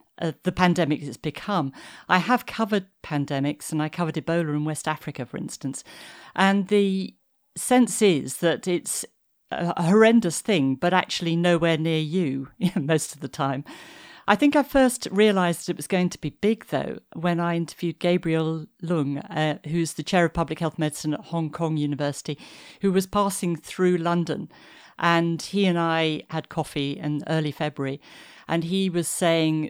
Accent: British